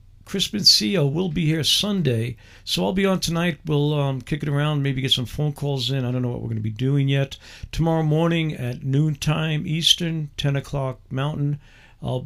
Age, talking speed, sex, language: 50-69, 200 wpm, male, English